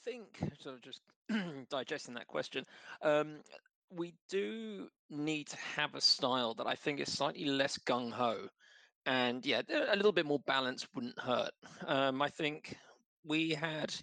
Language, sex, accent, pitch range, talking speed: English, male, British, 130-180 Hz, 165 wpm